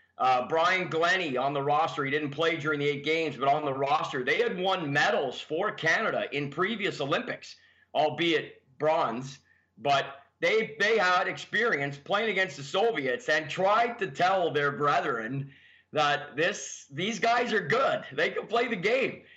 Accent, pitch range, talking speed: American, 140-175 Hz, 165 wpm